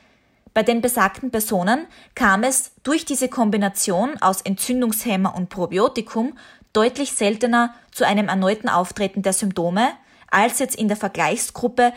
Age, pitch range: 20-39, 195-245 Hz